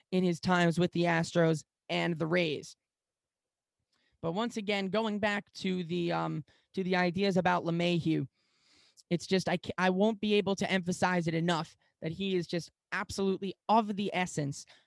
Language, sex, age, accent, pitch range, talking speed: English, male, 10-29, American, 170-210 Hz, 165 wpm